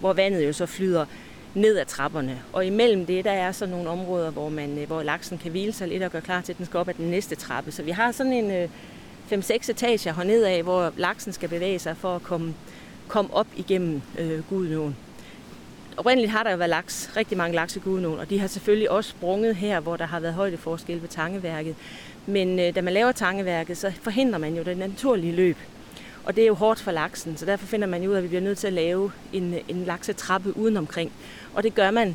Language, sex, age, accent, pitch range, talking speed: Danish, female, 30-49, native, 165-200 Hz, 235 wpm